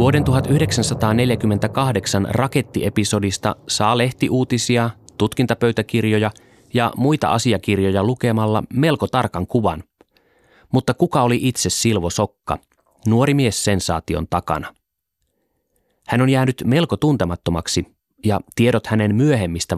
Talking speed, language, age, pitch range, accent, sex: 95 wpm, Finnish, 30-49, 90-120 Hz, native, male